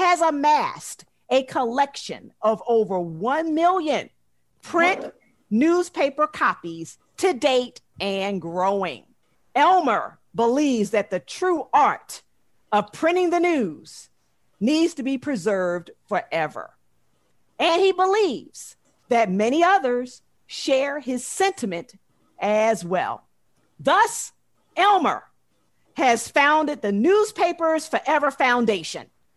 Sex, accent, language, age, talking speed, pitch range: female, American, English, 50-69, 100 wpm, 225-345 Hz